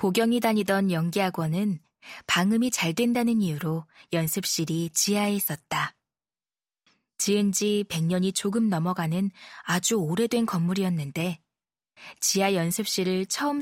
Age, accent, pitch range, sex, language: 20-39, native, 180-230 Hz, female, Korean